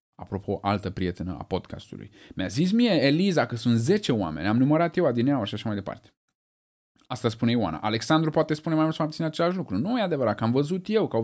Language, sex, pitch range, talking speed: Romanian, male, 100-145 Hz, 225 wpm